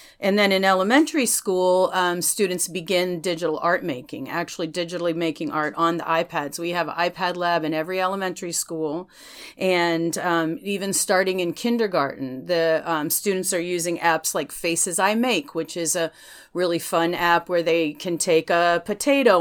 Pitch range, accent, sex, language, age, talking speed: 165-200 Hz, American, female, English, 40-59, 170 wpm